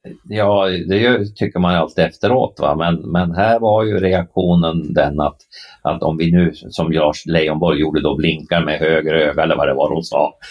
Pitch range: 85-115 Hz